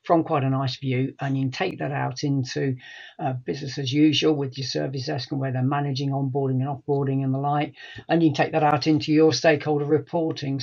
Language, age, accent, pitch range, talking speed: English, 50-69, British, 135-150 Hz, 225 wpm